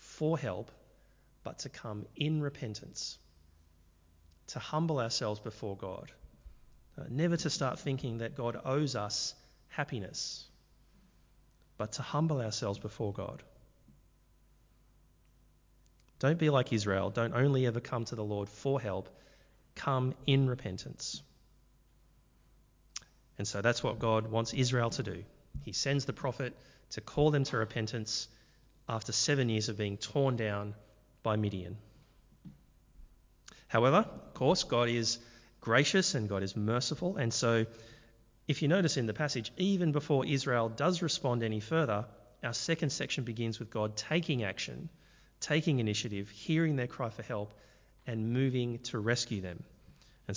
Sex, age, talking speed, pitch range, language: male, 30-49, 140 wpm, 105-140 Hz, English